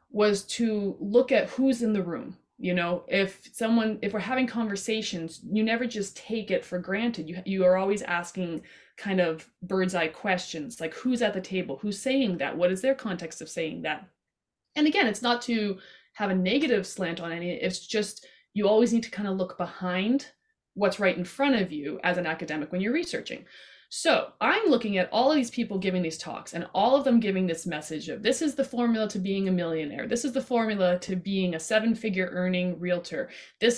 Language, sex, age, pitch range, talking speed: English, female, 20-39, 180-235 Hz, 215 wpm